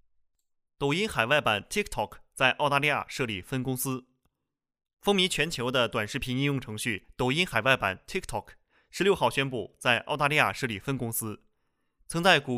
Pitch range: 115-150 Hz